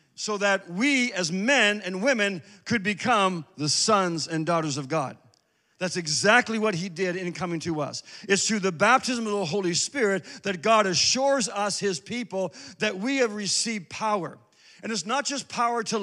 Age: 50-69